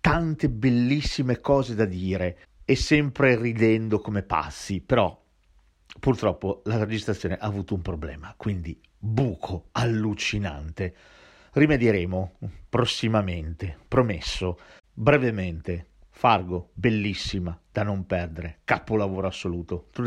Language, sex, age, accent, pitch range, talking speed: Italian, male, 50-69, native, 90-115 Hz, 100 wpm